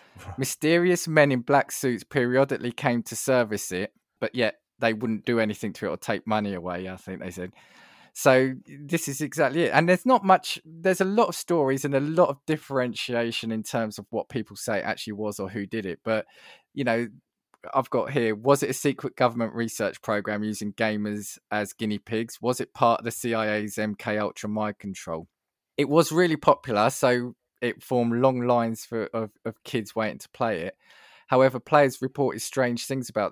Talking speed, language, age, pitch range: 195 wpm, English, 20-39, 110-135 Hz